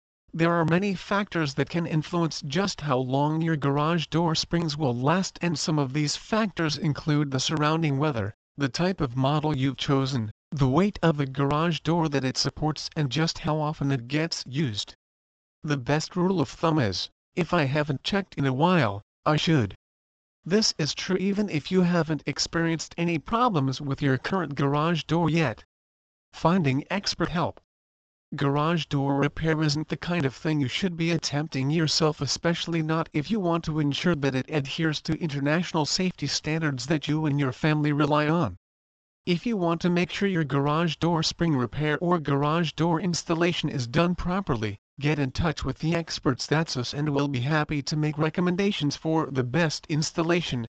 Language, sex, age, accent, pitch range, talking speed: English, male, 40-59, American, 140-170 Hz, 180 wpm